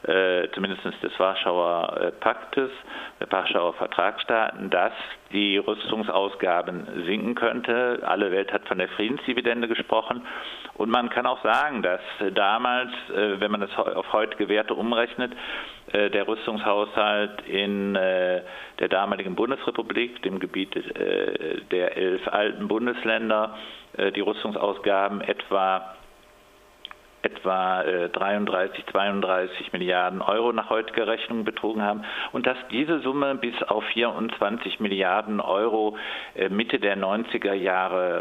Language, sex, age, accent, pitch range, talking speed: German, male, 50-69, German, 95-120 Hz, 110 wpm